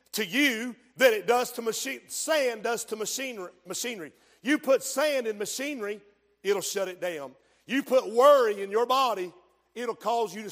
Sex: male